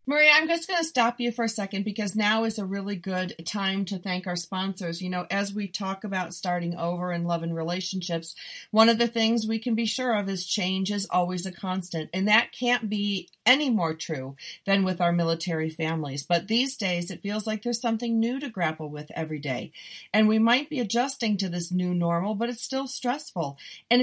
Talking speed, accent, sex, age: 220 wpm, American, female, 40-59